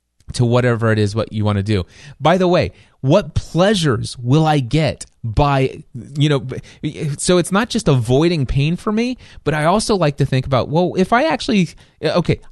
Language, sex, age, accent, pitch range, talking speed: English, male, 30-49, American, 115-170 Hz, 190 wpm